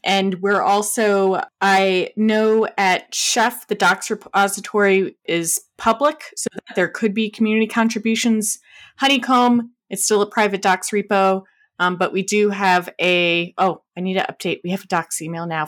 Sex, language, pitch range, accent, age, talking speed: female, English, 180-225 Hz, American, 20-39, 160 wpm